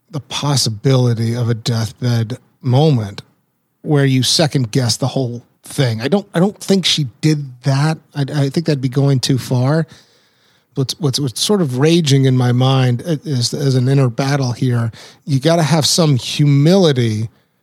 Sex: male